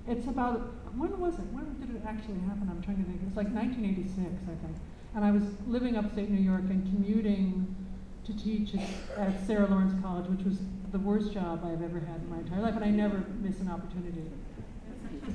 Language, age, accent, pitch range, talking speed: English, 50-69, American, 185-230 Hz, 215 wpm